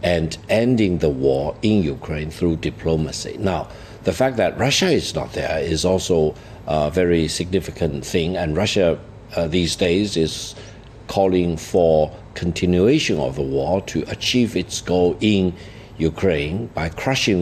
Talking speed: 145 wpm